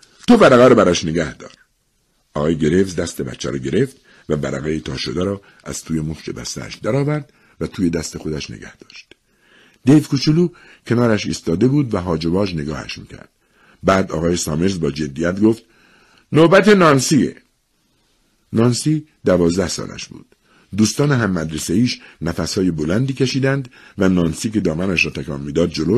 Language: Persian